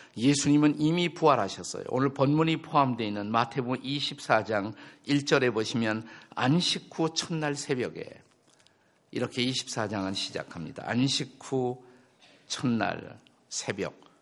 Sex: male